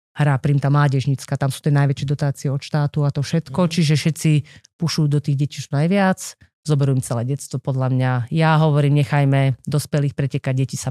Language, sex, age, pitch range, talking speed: Slovak, female, 30-49, 135-150 Hz, 195 wpm